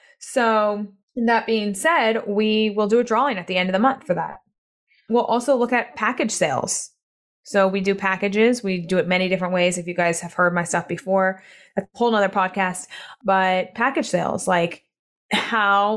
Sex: female